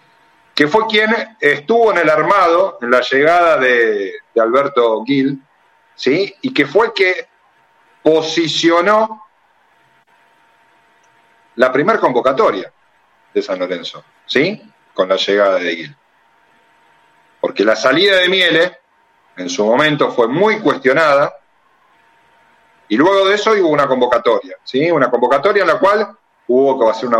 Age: 40-59